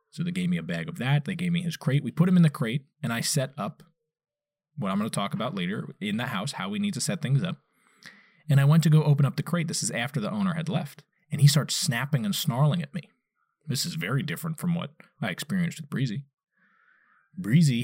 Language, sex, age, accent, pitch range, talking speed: English, male, 20-39, American, 145-185 Hz, 250 wpm